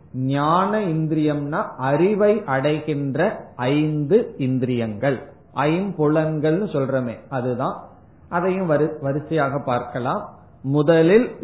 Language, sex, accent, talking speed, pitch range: Tamil, male, native, 65 wpm, 140-185 Hz